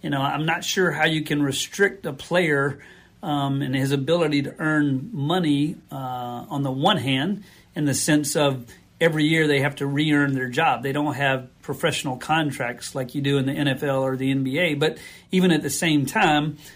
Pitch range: 135-155 Hz